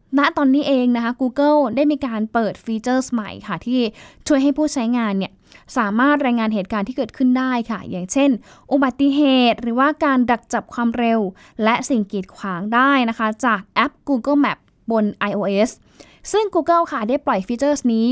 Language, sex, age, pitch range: Thai, female, 10-29, 205-260 Hz